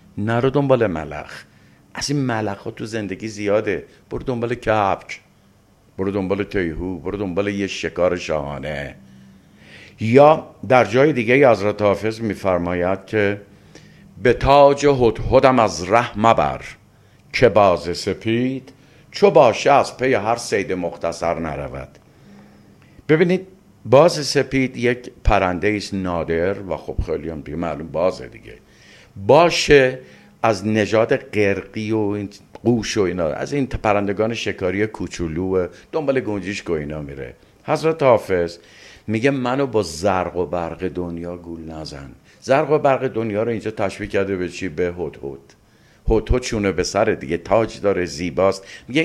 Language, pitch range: Persian, 90-120 Hz